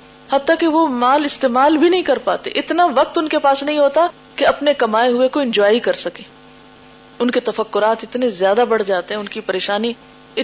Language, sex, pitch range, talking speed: Urdu, female, 220-280 Hz, 200 wpm